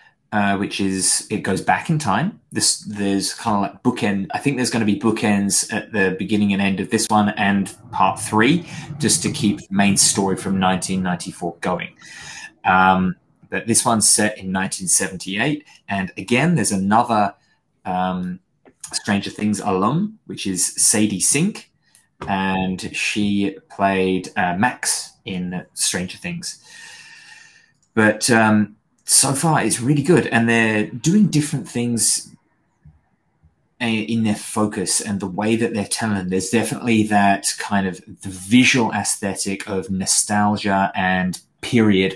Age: 20-39